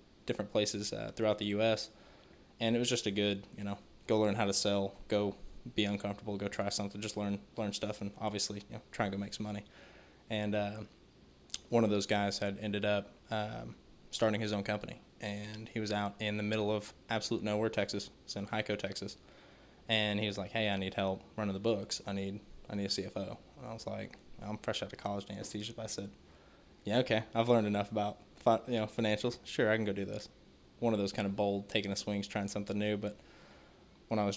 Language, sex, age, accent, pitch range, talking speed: English, male, 20-39, American, 100-110 Hz, 225 wpm